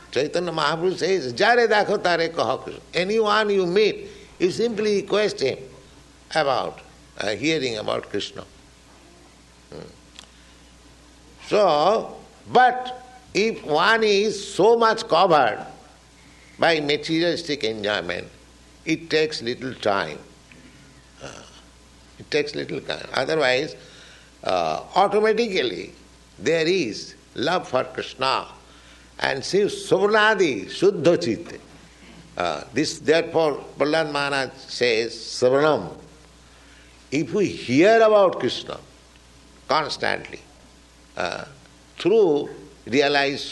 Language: English